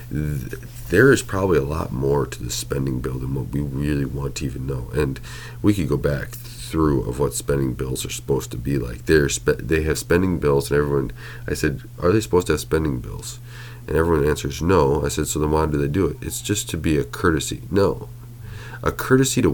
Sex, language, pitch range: male, English, 70-120 Hz